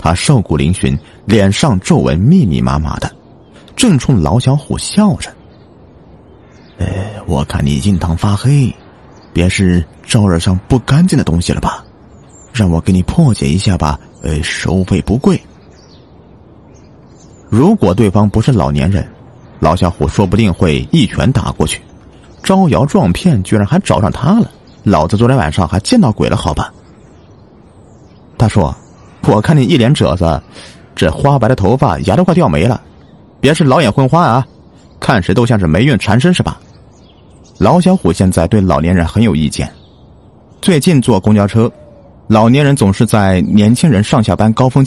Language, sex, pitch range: Chinese, male, 85-120 Hz